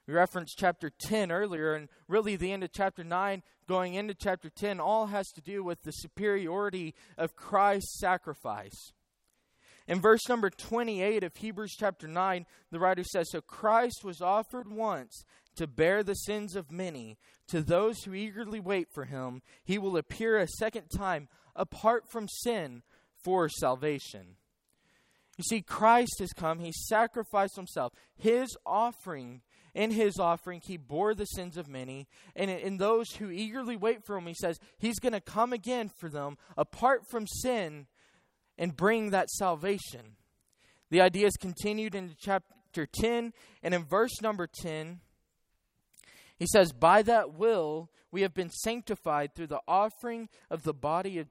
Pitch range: 165-215 Hz